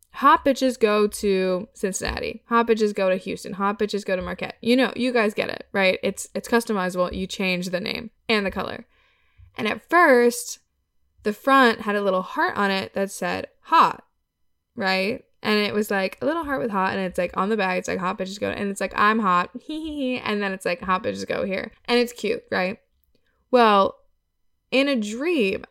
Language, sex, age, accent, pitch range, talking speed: English, female, 10-29, American, 190-245 Hz, 210 wpm